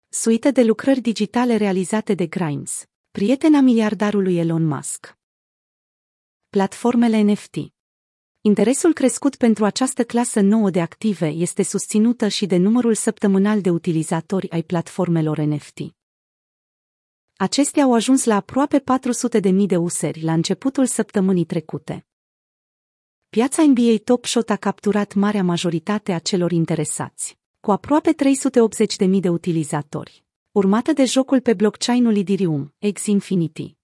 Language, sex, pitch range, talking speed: Romanian, female, 175-240 Hz, 125 wpm